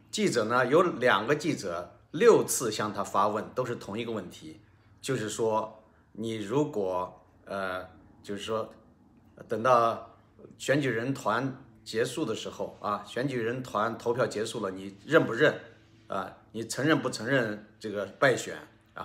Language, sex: Chinese, male